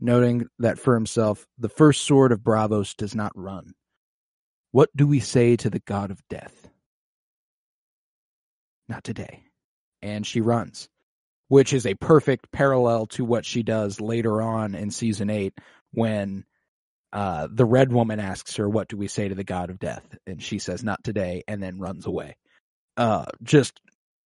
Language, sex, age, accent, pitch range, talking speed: English, male, 30-49, American, 105-125 Hz, 165 wpm